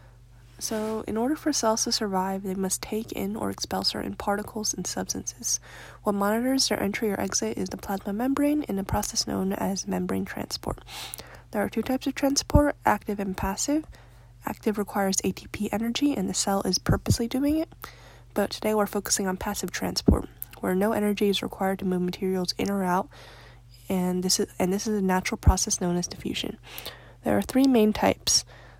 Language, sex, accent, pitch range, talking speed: English, female, American, 180-220 Hz, 185 wpm